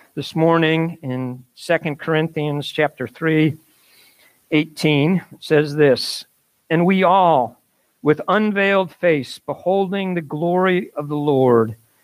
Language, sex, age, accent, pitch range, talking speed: English, male, 50-69, American, 150-185 Hz, 110 wpm